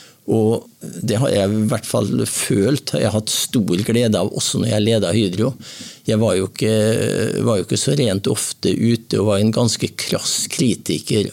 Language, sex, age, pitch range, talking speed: English, male, 50-69, 95-120 Hz, 170 wpm